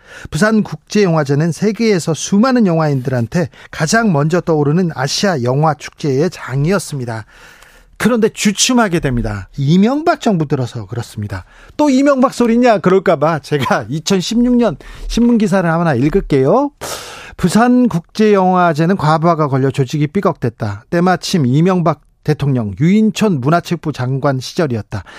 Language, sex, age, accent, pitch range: Korean, male, 40-59, native, 135-180 Hz